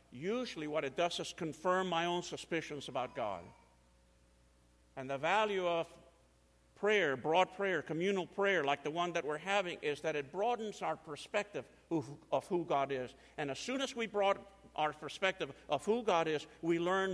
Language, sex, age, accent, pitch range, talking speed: English, male, 50-69, American, 120-185 Hz, 175 wpm